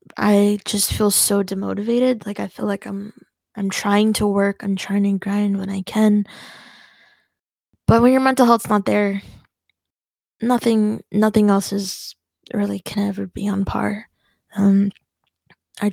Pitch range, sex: 195-215 Hz, female